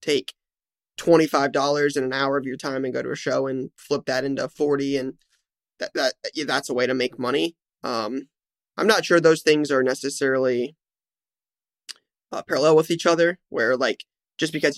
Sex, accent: male, American